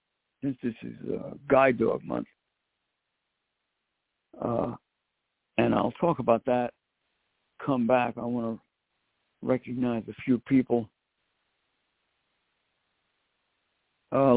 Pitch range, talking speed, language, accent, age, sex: 115-150 Hz, 95 wpm, English, American, 60-79, male